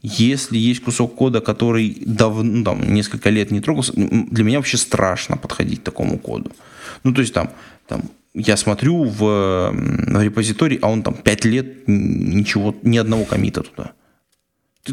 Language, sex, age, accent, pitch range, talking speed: Russian, male, 20-39, native, 105-130 Hz, 165 wpm